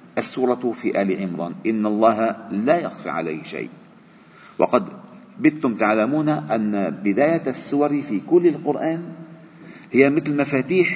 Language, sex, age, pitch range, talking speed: Arabic, male, 50-69, 120-190 Hz, 120 wpm